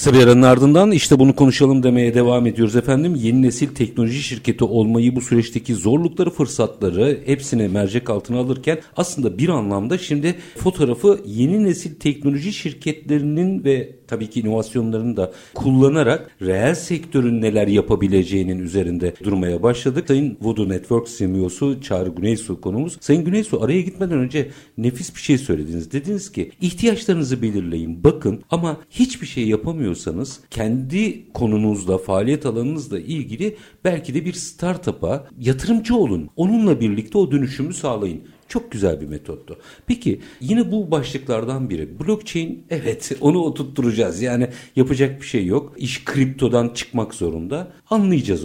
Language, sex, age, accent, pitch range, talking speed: Turkish, male, 50-69, native, 110-160 Hz, 135 wpm